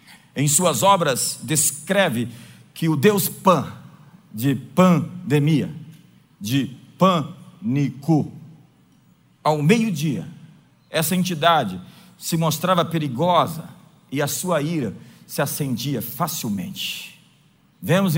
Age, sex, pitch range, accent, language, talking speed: 50-69, male, 145-210 Hz, Brazilian, Portuguese, 90 wpm